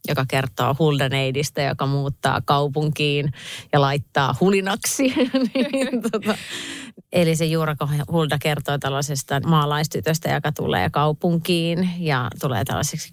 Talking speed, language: 110 wpm, Finnish